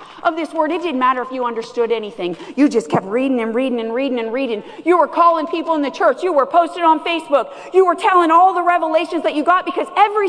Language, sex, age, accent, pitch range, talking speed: English, female, 40-59, American, 230-325 Hz, 250 wpm